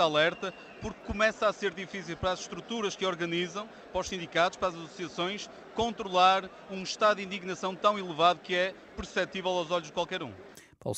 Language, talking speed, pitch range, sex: Portuguese, 180 wpm, 110-145 Hz, male